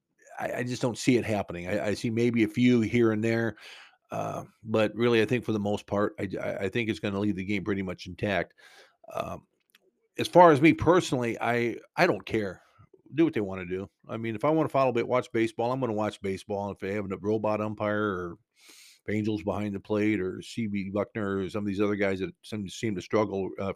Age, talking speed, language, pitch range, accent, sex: 50-69, 235 wpm, English, 100-120 Hz, American, male